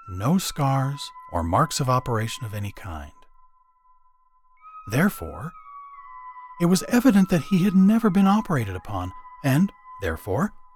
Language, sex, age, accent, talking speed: English, male, 40-59, American, 125 wpm